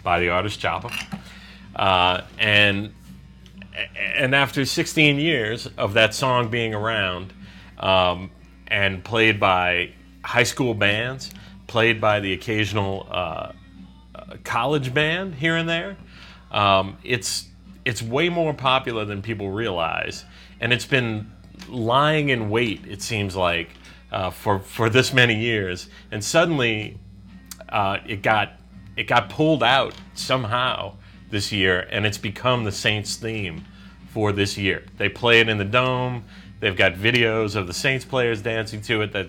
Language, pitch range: English, 95-115 Hz